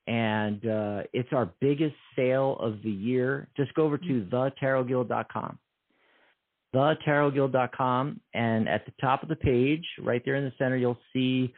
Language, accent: English, American